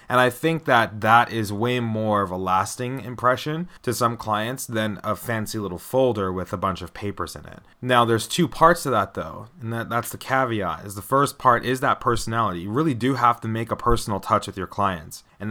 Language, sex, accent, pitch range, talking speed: English, male, American, 100-125 Hz, 225 wpm